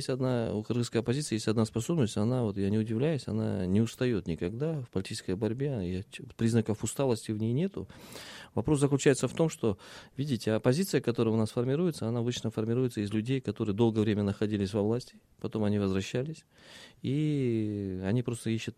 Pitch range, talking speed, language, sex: 100-125 Hz, 175 wpm, Russian, male